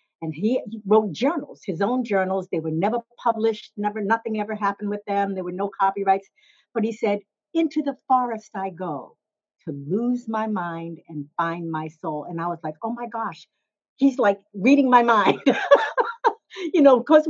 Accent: American